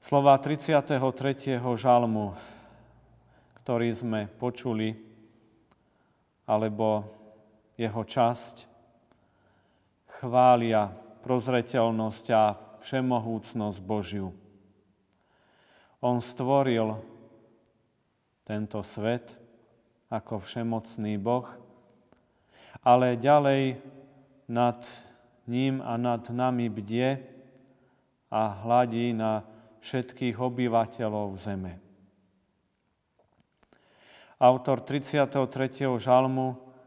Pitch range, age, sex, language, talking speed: 110-130 Hz, 40-59, male, Slovak, 65 wpm